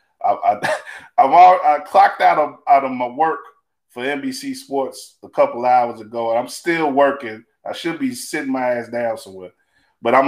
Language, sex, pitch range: English, male, 105-135 Hz